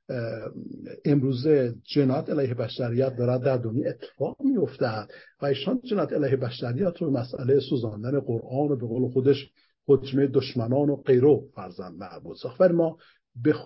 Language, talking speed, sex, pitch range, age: English, 135 wpm, male, 125-150 Hz, 50-69